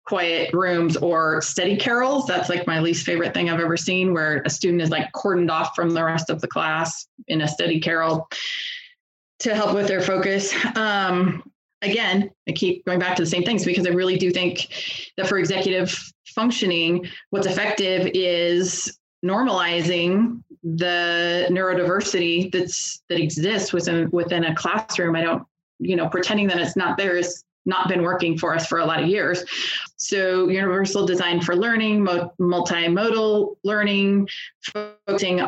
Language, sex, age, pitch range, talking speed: English, female, 20-39, 170-200 Hz, 160 wpm